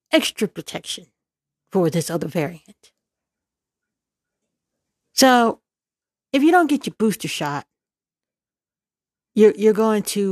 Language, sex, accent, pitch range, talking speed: English, female, American, 175-240 Hz, 105 wpm